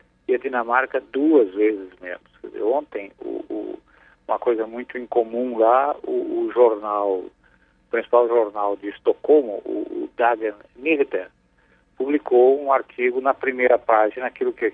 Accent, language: Brazilian, Portuguese